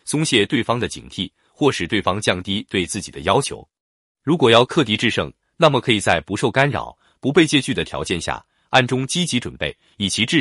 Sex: male